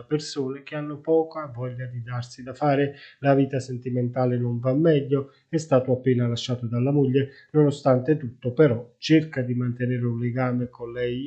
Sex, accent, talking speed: male, native, 165 wpm